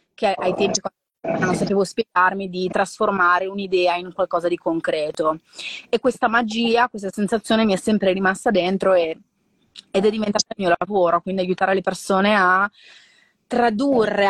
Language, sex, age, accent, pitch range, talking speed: Italian, female, 30-49, native, 195-230 Hz, 155 wpm